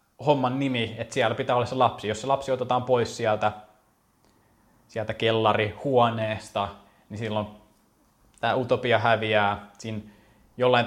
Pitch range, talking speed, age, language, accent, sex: 100-115 Hz, 125 wpm, 20-39, Finnish, native, male